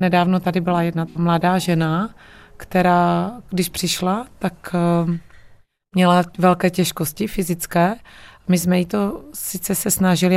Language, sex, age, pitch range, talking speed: Czech, female, 30-49, 170-190 Hz, 120 wpm